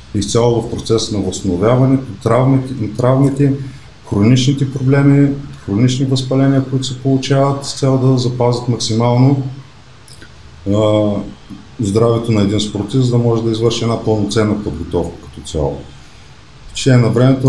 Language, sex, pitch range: Bulgarian, male, 110-130 Hz